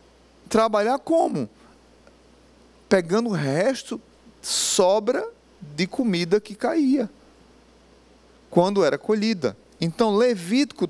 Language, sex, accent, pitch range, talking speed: Portuguese, male, Brazilian, 155-225 Hz, 85 wpm